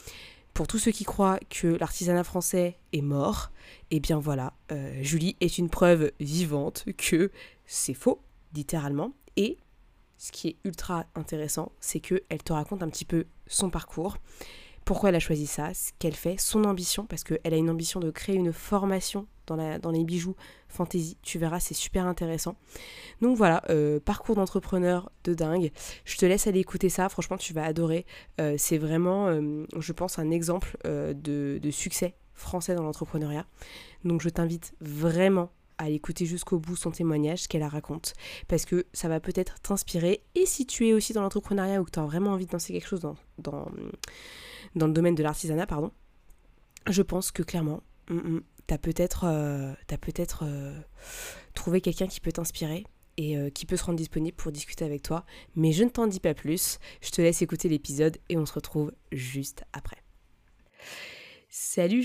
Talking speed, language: 185 wpm, French